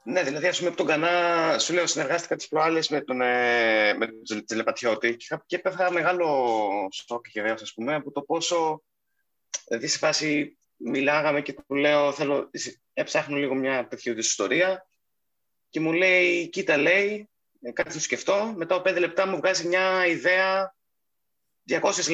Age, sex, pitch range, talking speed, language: 30-49, male, 105-175 Hz, 145 wpm, Greek